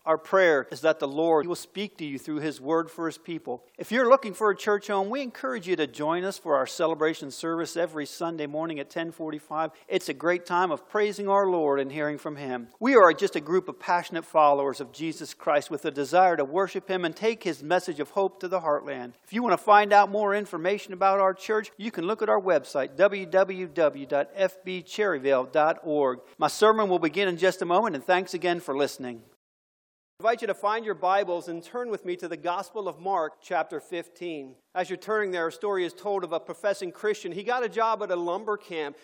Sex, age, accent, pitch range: male, 50-69, American, 160-210 Hz